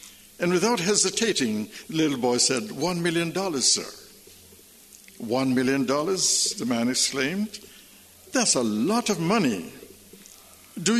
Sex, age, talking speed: male, 60-79, 125 wpm